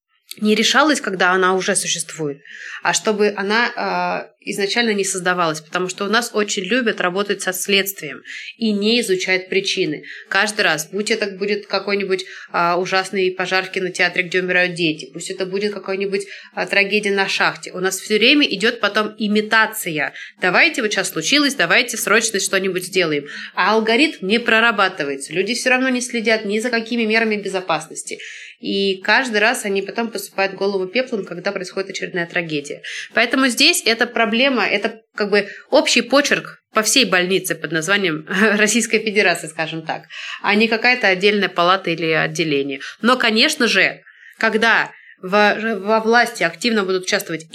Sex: female